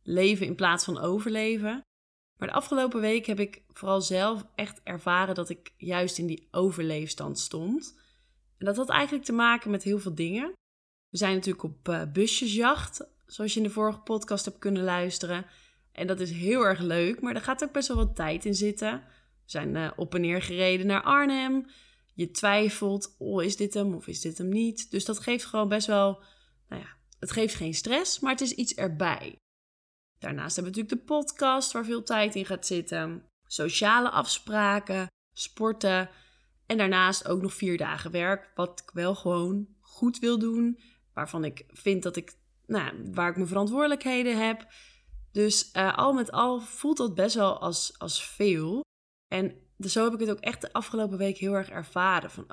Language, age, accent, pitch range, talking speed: Dutch, 20-39, Dutch, 180-230 Hz, 190 wpm